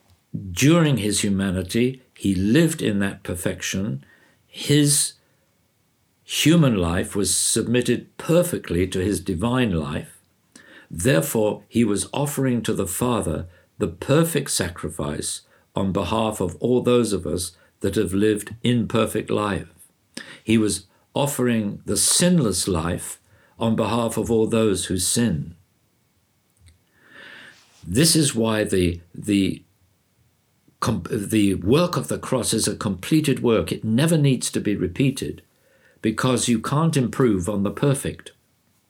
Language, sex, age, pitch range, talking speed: English, male, 50-69, 95-130 Hz, 125 wpm